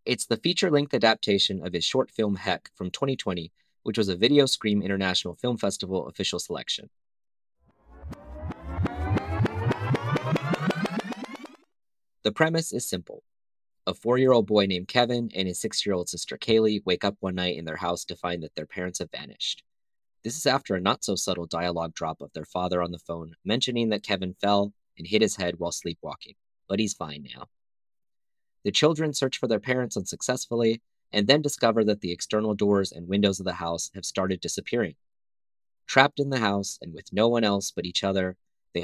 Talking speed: 170 wpm